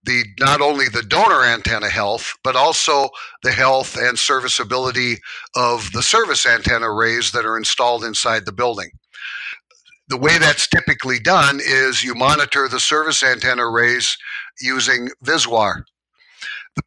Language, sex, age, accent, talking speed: English, male, 60-79, American, 140 wpm